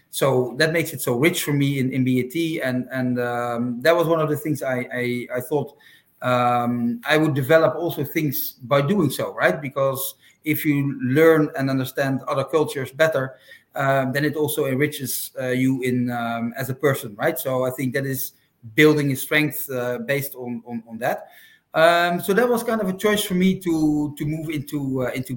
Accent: Dutch